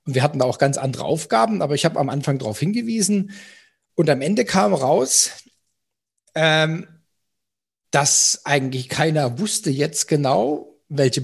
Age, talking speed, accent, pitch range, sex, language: 40-59, 145 wpm, German, 135-170 Hz, male, German